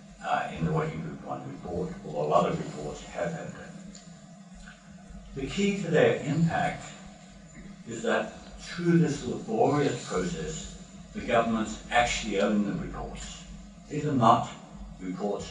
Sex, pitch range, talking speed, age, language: male, 115-185 Hz, 140 wpm, 60-79, English